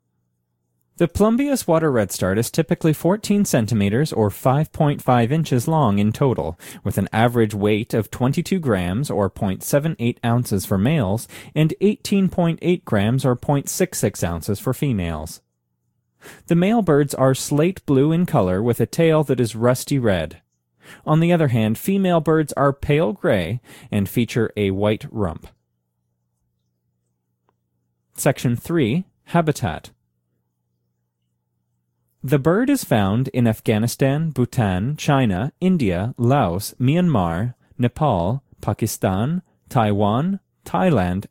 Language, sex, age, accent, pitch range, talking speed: English, male, 30-49, American, 95-150 Hz, 120 wpm